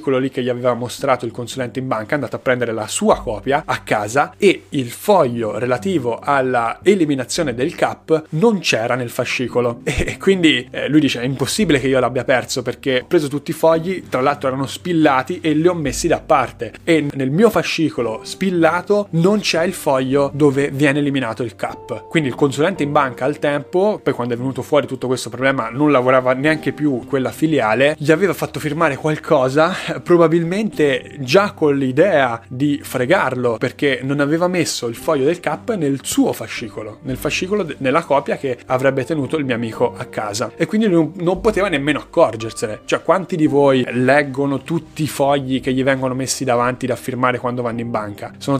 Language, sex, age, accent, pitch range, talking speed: Italian, male, 30-49, native, 125-155 Hz, 185 wpm